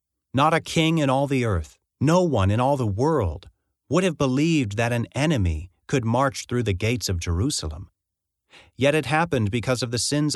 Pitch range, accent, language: 95-130 Hz, American, English